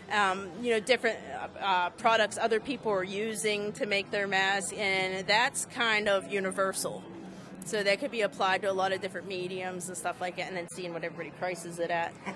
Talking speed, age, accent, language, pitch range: 210 wpm, 30-49, American, English, 185-230 Hz